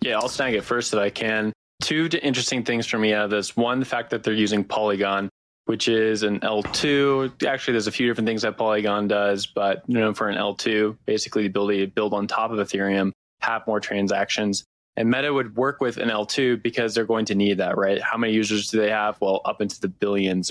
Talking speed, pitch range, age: 225 wpm, 100-125 Hz, 20-39